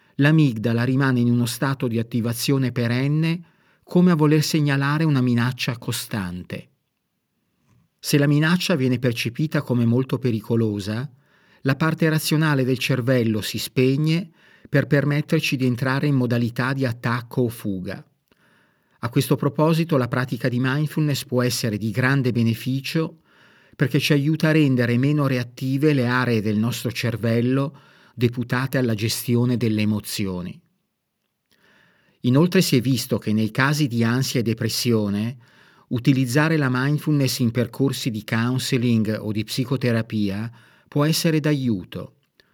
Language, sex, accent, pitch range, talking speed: Italian, male, native, 120-145 Hz, 130 wpm